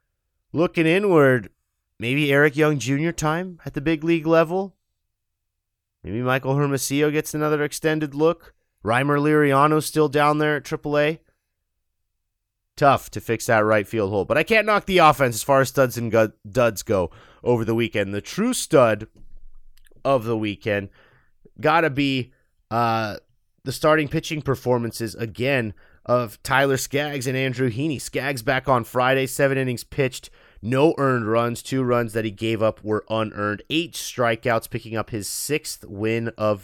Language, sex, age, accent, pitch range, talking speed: English, male, 30-49, American, 110-150 Hz, 155 wpm